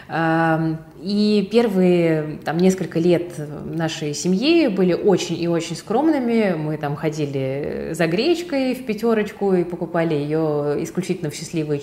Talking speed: 125 wpm